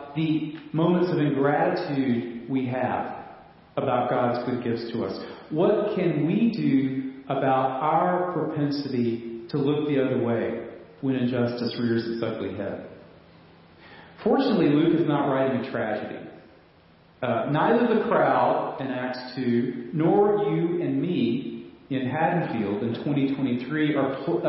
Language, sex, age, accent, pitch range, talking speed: English, male, 40-59, American, 120-160 Hz, 125 wpm